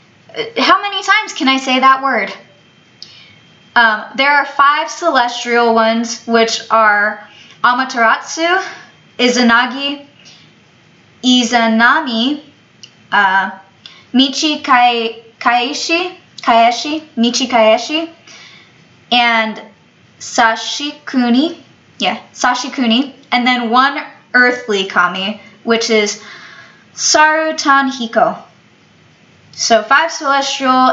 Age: 20-39